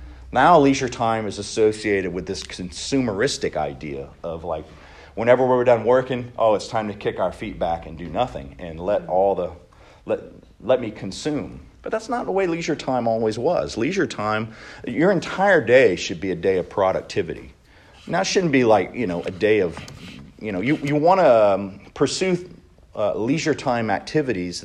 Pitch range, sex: 95-145 Hz, male